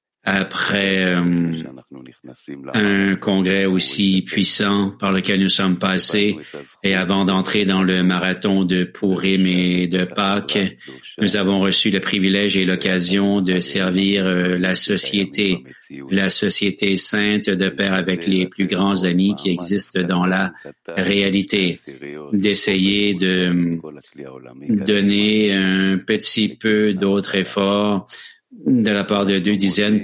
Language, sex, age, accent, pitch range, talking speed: English, male, 40-59, Canadian, 95-100 Hz, 125 wpm